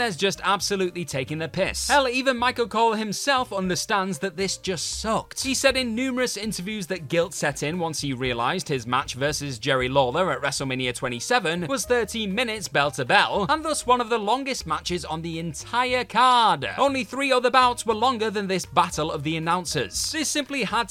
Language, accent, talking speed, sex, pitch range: English, British, 190 wpm, male, 150-235 Hz